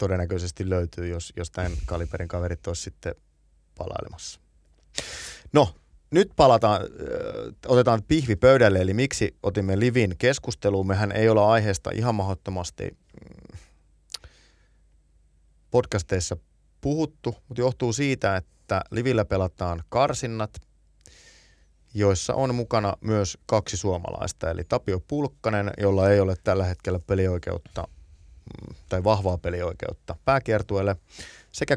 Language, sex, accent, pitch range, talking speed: Finnish, male, native, 85-110 Hz, 105 wpm